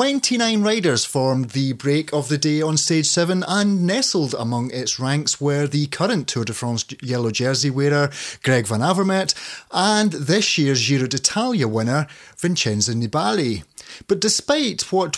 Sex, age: male, 30-49